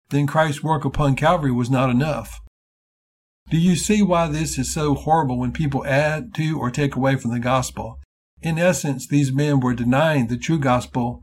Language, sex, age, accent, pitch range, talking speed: English, male, 60-79, American, 120-145 Hz, 185 wpm